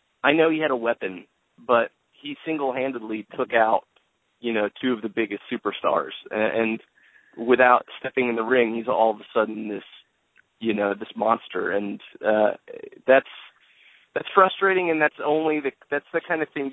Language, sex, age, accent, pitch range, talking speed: English, male, 20-39, American, 105-140 Hz, 175 wpm